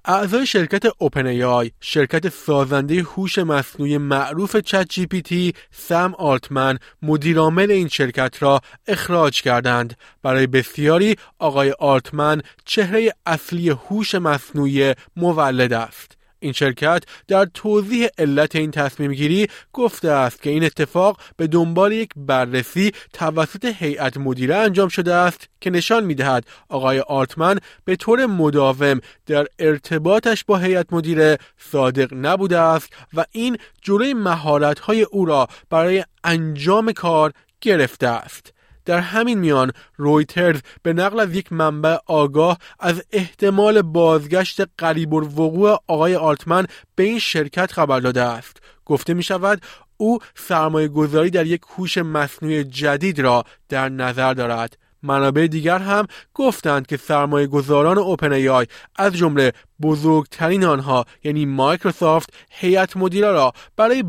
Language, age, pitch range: Persian, 30-49, 140-190 Hz